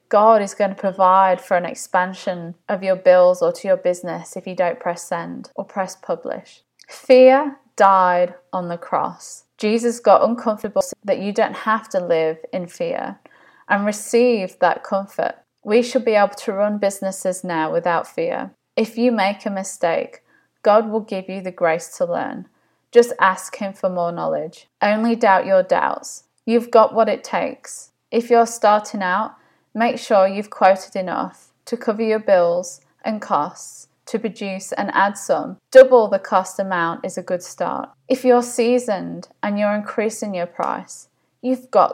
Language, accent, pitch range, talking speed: English, British, 185-230 Hz, 170 wpm